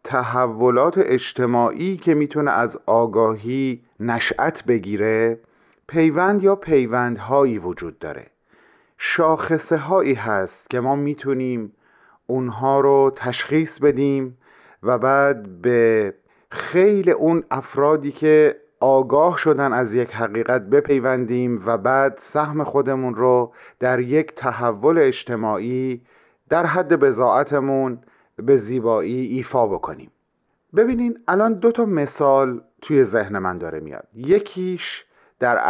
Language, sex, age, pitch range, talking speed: Persian, male, 40-59, 120-160 Hz, 105 wpm